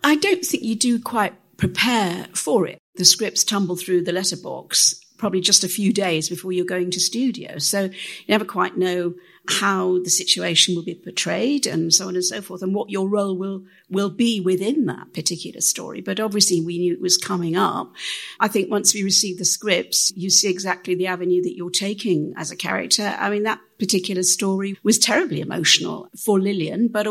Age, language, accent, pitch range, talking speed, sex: 50-69, English, British, 180-205 Hz, 200 wpm, female